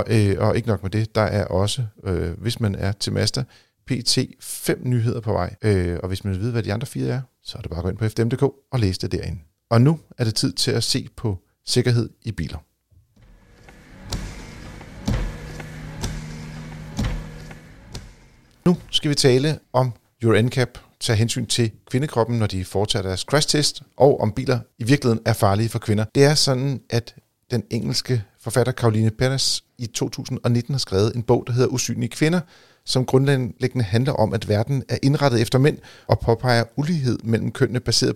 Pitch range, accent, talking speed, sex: 105-130 Hz, native, 185 wpm, male